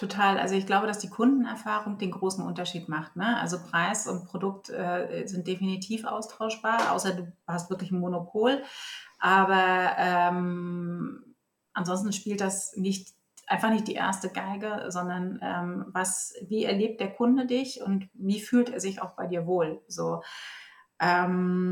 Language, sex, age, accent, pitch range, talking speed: German, female, 30-49, German, 190-220 Hz, 155 wpm